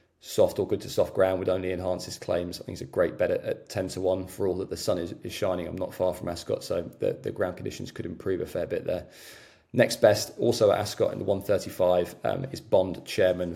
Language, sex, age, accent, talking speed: English, male, 20-39, British, 255 wpm